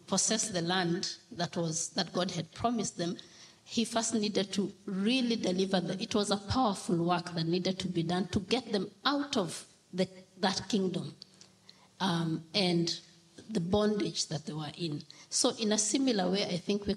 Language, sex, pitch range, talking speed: English, female, 170-205 Hz, 180 wpm